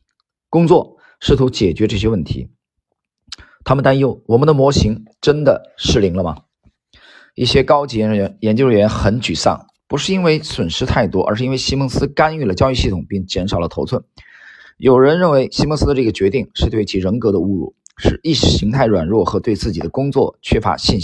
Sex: male